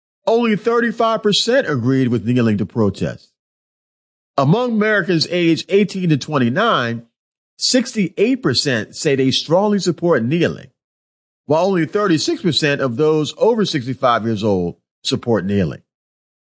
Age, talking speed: 50-69, 110 wpm